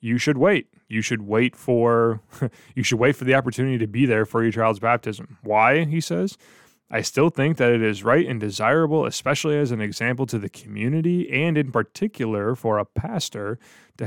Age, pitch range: 20-39, 110-135 Hz